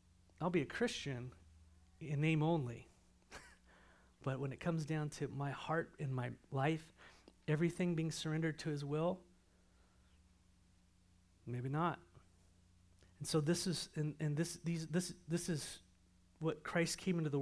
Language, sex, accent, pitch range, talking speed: English, male, American, 125-170 Hz, 145 wpm